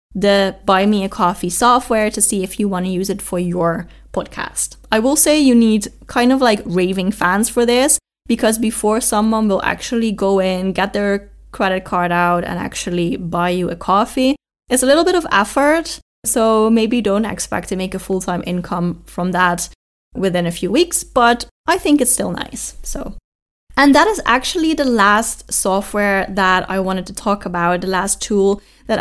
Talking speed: 190 wpm